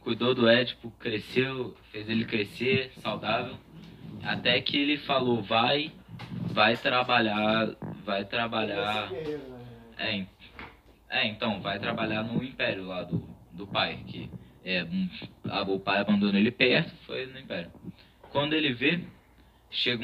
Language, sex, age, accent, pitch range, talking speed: Portuguese, male, 20-39, Brazilian, 95-120 Hz, 120 wpm